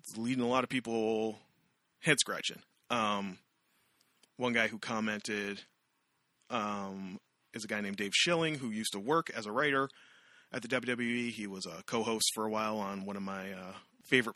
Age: 30-49